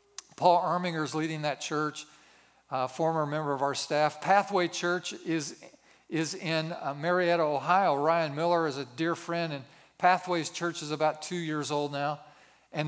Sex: male